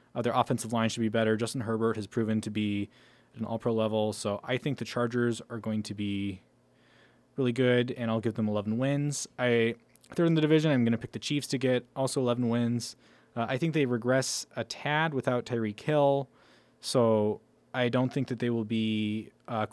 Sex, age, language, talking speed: male, 20-39, English, 205 wpm